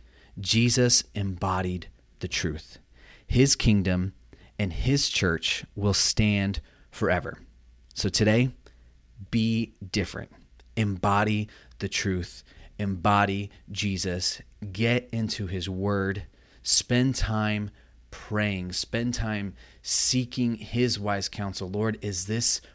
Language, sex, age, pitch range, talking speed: English, male, 30-49, 85-110 Hz, 100 wpm